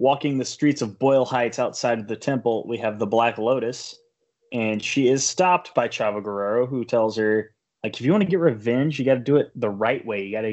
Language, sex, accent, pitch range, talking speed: English, male, American, 110-135 Hz, 245 wpm